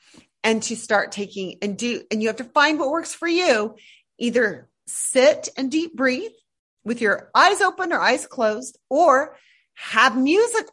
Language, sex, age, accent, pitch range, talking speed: English, female, 40-59, American, 245-360 Hz, 170 wpm